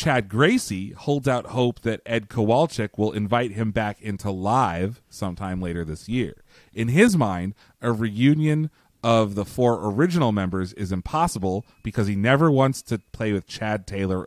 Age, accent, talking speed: 30-49, American, 165 wpm